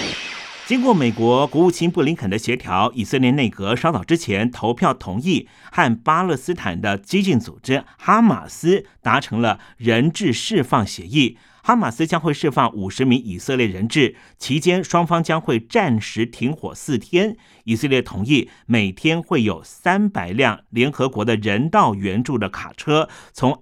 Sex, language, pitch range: male, Chinese, 110-160 Hz